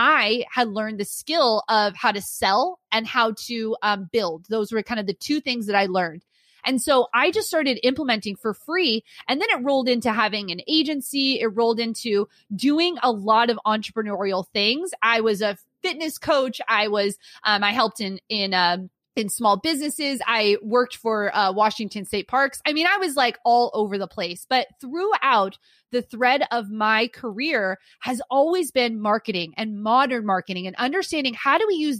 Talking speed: 190 wpm